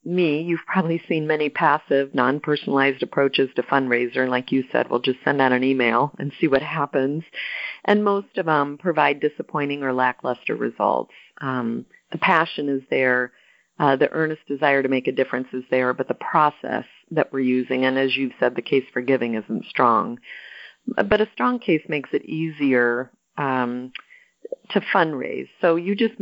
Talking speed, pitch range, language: 175 wpm, 130-155 Hz, English